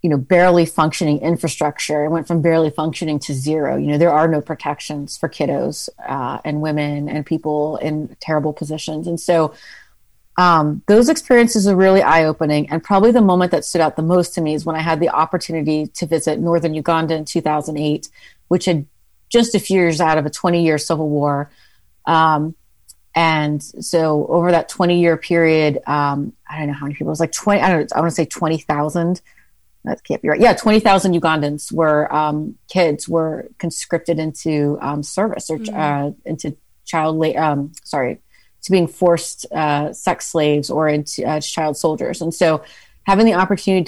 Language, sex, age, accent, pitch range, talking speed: English, female, 30-49, American, 150-175 Hz, 185 wpm